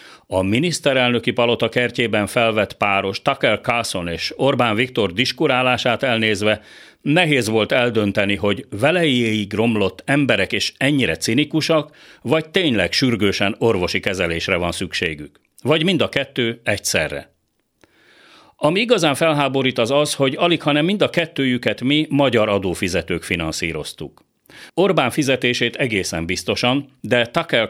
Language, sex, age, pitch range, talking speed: Hungarian, male, 40-59, 100-140 Hz, 120 wpm